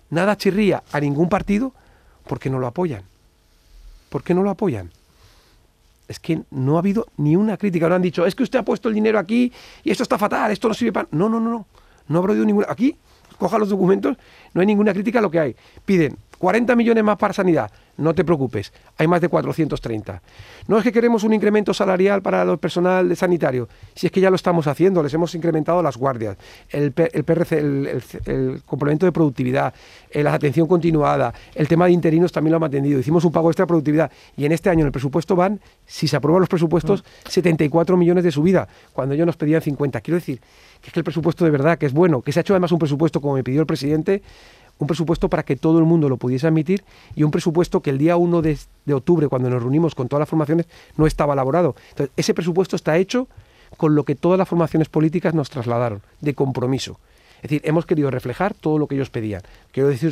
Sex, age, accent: male, 40-59, Spanish